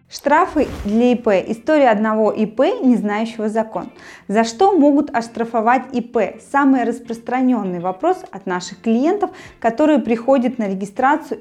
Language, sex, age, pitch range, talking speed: Russian, female, 20-39, 200-265 Hz, 125 wpm